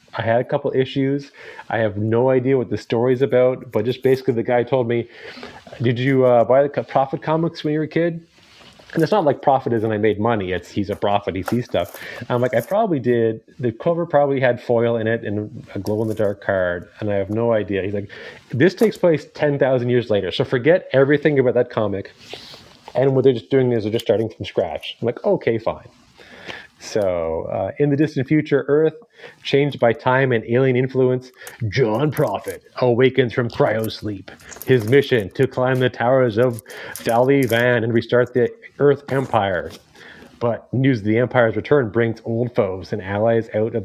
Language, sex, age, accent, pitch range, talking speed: English, male, 30-49, American, 110-135 Hz, 195 wpm